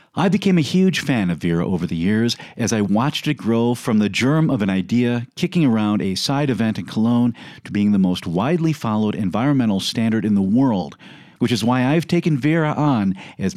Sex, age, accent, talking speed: male, 50-69, American, 210 wpm